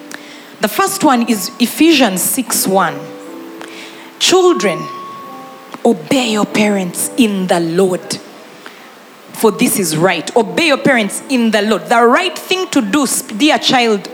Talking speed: 125 wpm